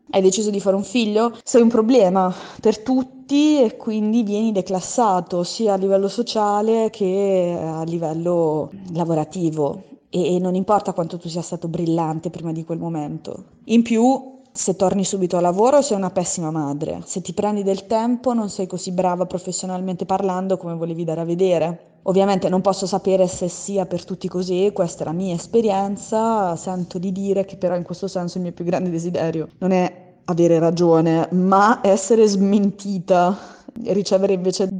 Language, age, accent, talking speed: Italian, 20-39, native, 170 wpm